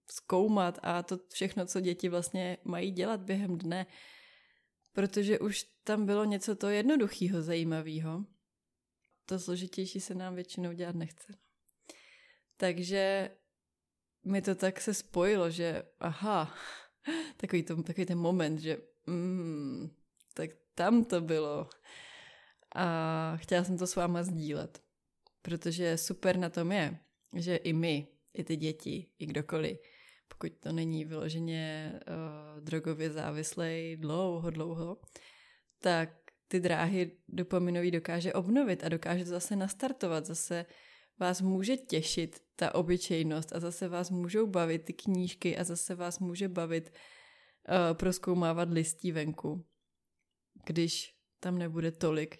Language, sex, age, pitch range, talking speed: Czech, female, 20-39, 165-190 Hz, 125 wpm